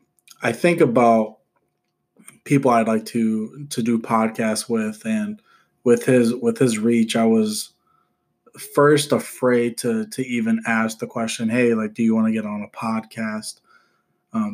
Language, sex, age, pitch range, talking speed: English, male, 20-39, 110-130 Hz, 155 wpm